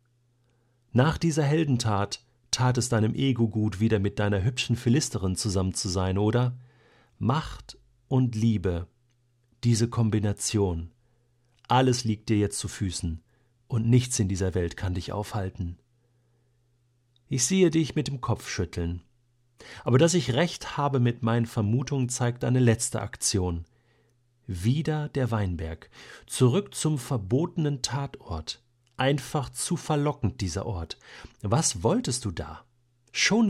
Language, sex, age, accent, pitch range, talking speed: German, male, 40-59, German, 105-130 Hz, 130 wpm